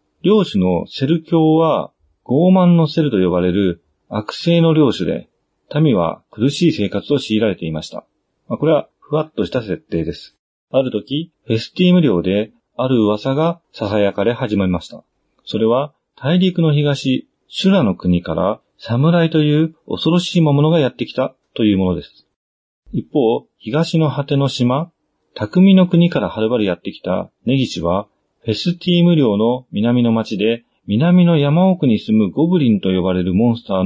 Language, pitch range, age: Japanese, 100-165 Hz, 40-59